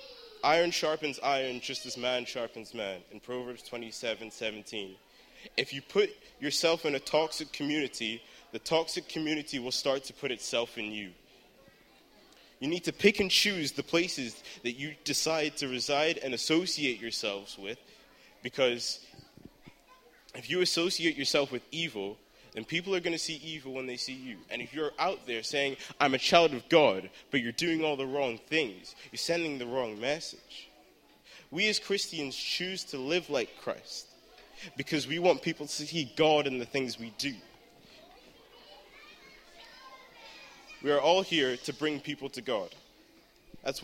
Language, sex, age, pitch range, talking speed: English, male, 20-39, 125-165 Hz, 160 wpm